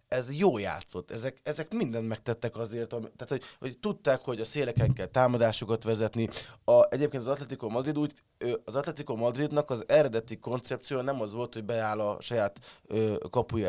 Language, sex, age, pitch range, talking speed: Hungarian, male, 20-39, 115-135 Hz, 160 wpm